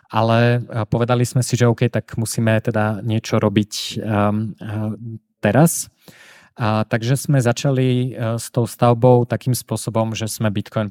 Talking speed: 145 wpm